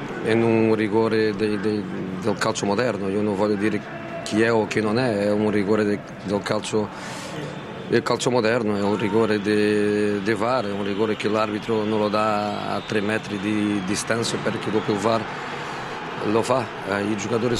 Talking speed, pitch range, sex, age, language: 190 wpm, 105-115 Hz, male, 40-59, Italian